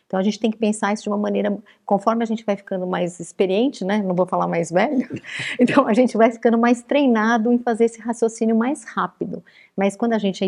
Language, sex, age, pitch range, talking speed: Portuguese, female, 40-59, 185-230 Hz, 235 wpm